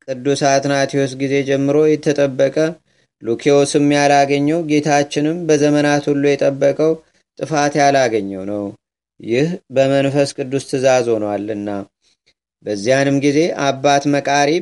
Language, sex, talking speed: Amharic, male, 90 wpm